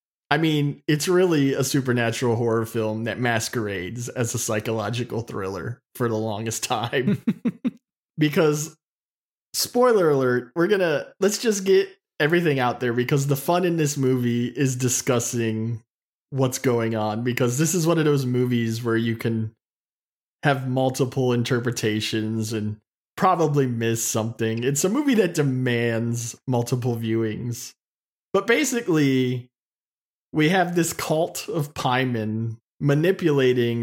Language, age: English, 20-39